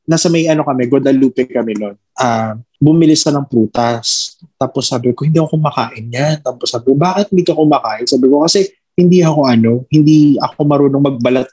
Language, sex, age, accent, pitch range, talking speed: Filipino, male, 20-39, native, 125-170 Hz, 185 wpm